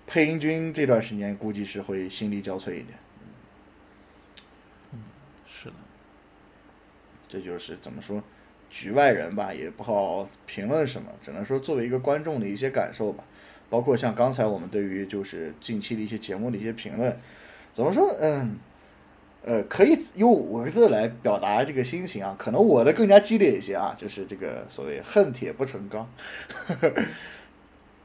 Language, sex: Chinese, male